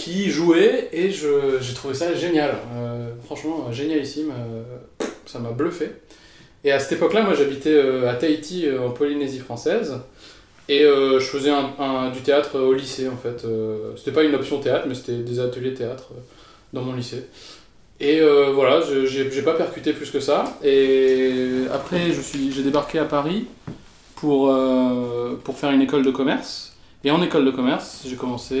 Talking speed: 185 wpm